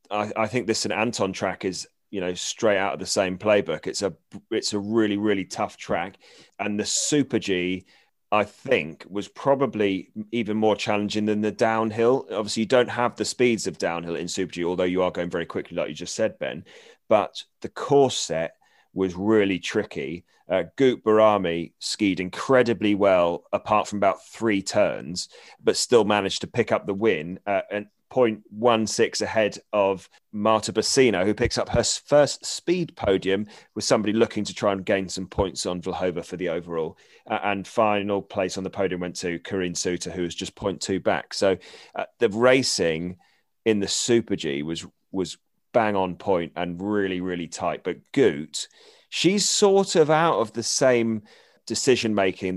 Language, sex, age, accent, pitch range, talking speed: English, male, 30-49, British, 95-110 Hz, 175 wpm